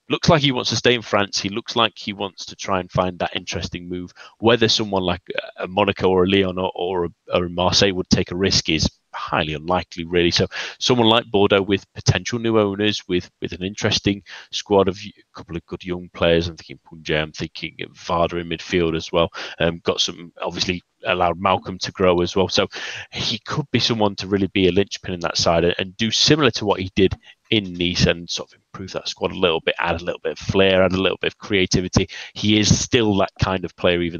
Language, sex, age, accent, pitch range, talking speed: English, male, 30-49, British, 90-105 Hz, 235 wpm